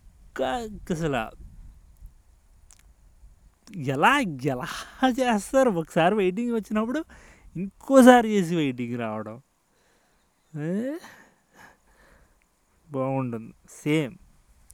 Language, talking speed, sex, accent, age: Telugu, 55 wpm, male, native, 20-39